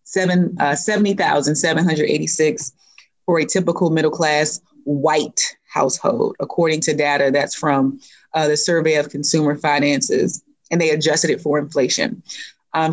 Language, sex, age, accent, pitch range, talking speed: English, female, 30-49, American, 145-175 Hz, 125 wpm